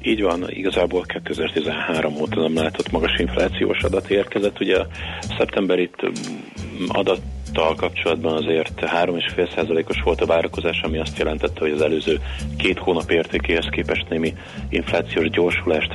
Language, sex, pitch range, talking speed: Hungarian, male, 75-90 Hz, 130 wpm